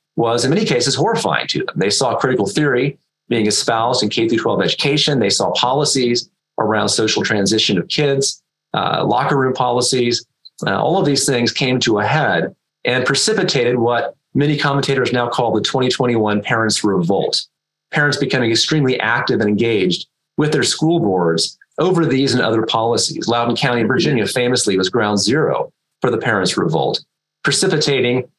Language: English